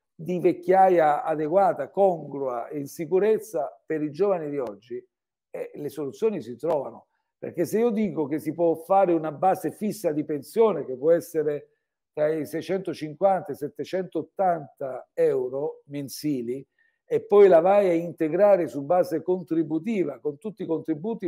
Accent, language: native, Italian